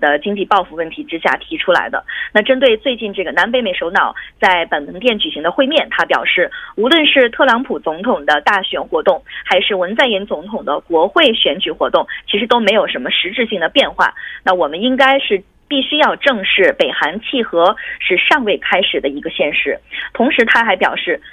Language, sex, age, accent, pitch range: Korean, female, 20-39, Chinese, 185-275 Hz